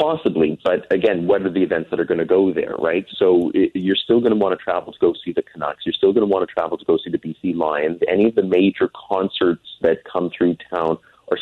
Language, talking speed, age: English, 265 wpm, 30-49